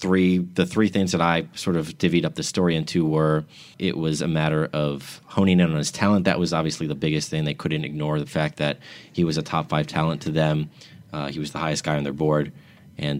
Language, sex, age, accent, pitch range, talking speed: English, male, 30-49, American, 75-85 Hz, 245 wpm